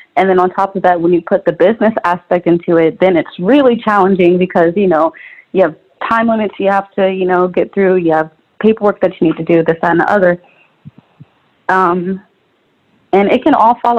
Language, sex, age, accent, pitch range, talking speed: English, female, 20-39, American, 175-210 Hz, 220 wpm